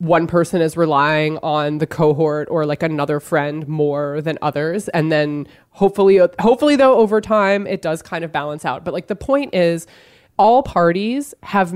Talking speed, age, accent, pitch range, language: 180 wpm, 20-39, American, 155-205 Hz, English